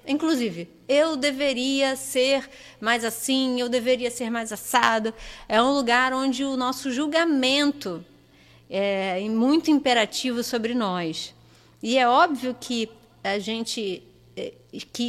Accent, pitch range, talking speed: Brazilian, 215-275 Hz, 120 wpm